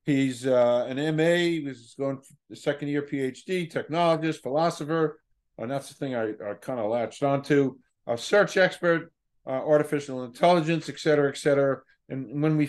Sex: male